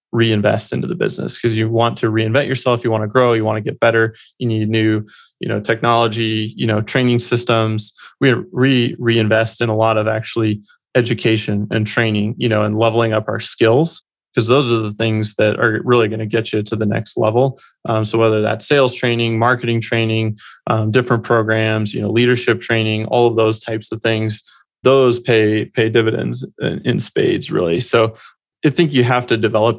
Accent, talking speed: American, 195 wpm